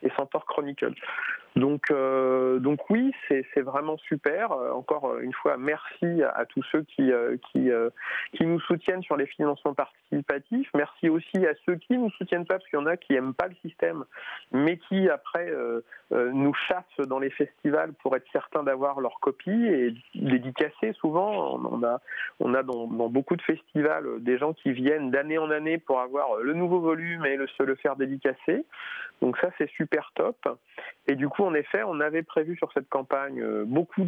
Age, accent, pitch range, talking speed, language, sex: 40-59, French, 130-175 Hz, 195 wpm, French, male